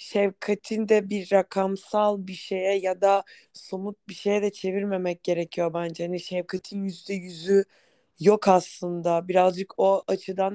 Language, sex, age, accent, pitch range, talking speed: Turkish, female, 20-39, native, 185-205 Hz, 130 wpm